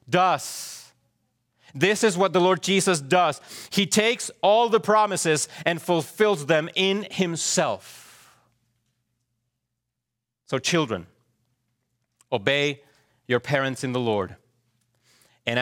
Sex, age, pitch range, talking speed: male, 30-49, 110-140 Hz, 105 wpm